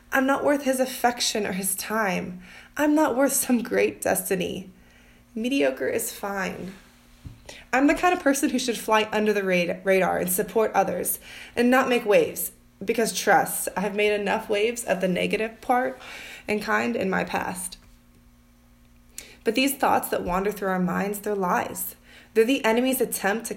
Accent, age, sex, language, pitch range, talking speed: American, 20-39, female, English, 180-235 Hz, 170 wpm